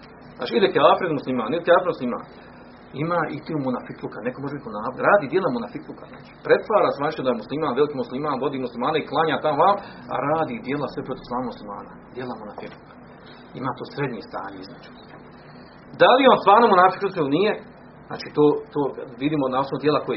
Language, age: Croatian, 40-59